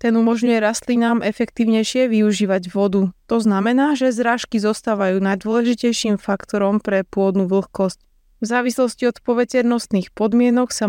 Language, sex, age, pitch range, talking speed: Slovak, female, 20-39, 200-235 Hz, 115 wpm